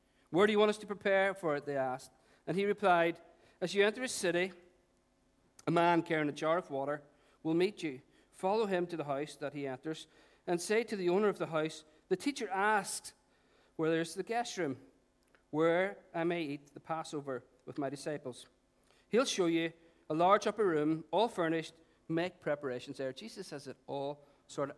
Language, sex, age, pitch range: English, male, 50-69, 135-180 Hz